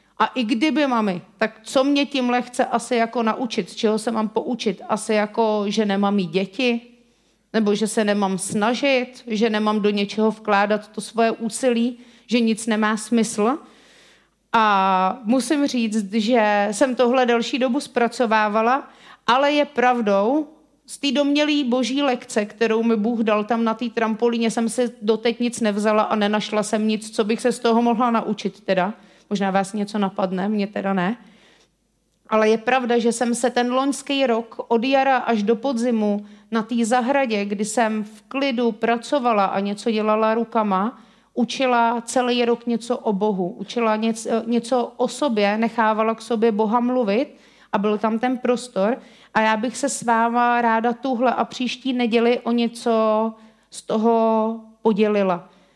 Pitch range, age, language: 215-245 Hz, 40-59, Czech